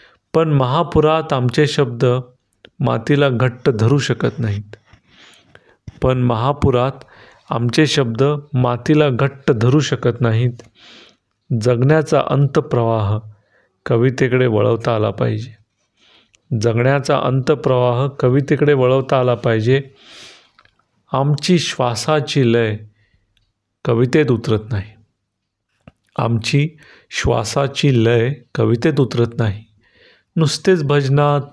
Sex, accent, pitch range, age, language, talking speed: male, native, 115-145 Hz, 40-59, Marathi, 85 wpm